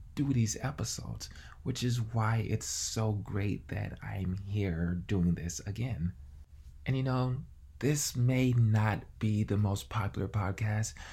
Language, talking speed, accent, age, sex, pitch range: English, 140 wpm, American, 20-39, male, 85-120 Hz